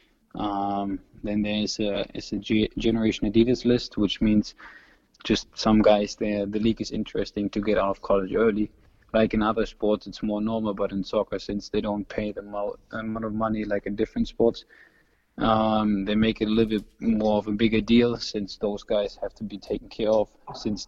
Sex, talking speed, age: male, 195 wpm, 20-39